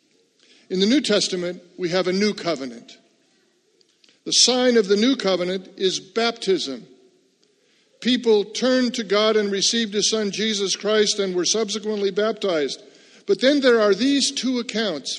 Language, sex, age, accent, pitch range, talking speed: English, male, 50-69, American, 190-230 Hz, 150 wpm